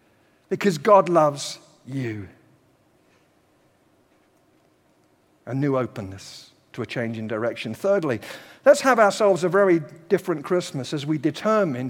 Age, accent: 50-69, British